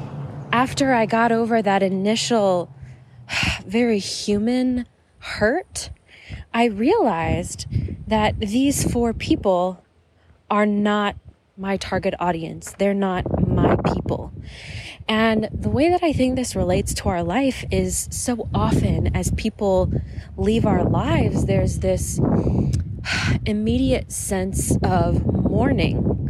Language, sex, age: English, female, 20-39